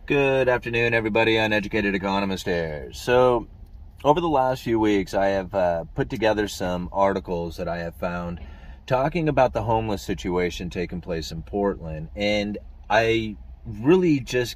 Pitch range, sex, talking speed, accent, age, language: 90-130 Hz, male, 150 wpm, American, 30-49, English